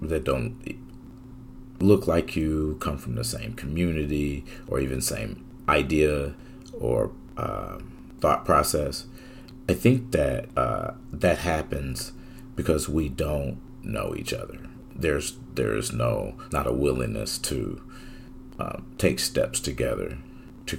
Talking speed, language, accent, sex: 120 wpm, English, American, male